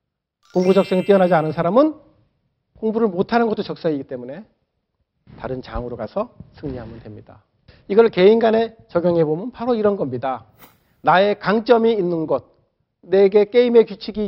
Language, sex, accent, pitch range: Korean, male, native, 130-210 Hz